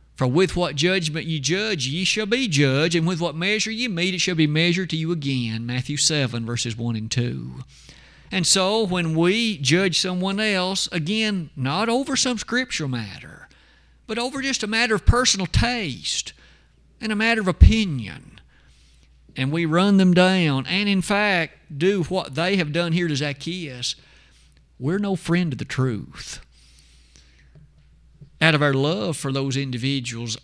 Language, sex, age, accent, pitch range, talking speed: English, male, 50-69, American, 130-185 Hz, 165 wpm